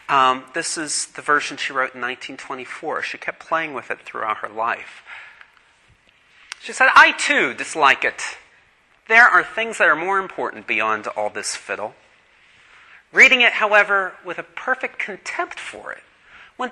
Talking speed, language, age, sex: 160 wpm, English, 40-59, male